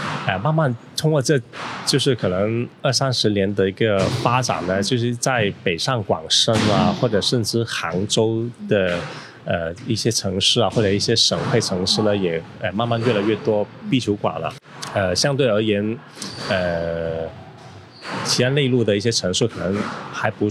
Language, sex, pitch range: Chinese, male, 95-130 Hz